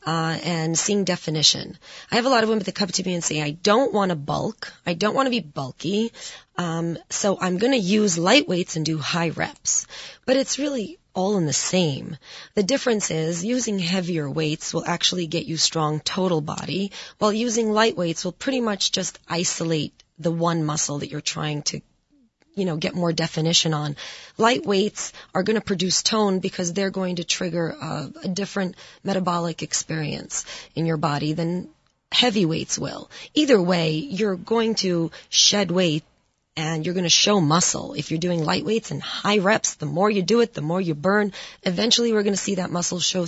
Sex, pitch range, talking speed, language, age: female, 160-210 Hz, 195 wpm, English, 30-49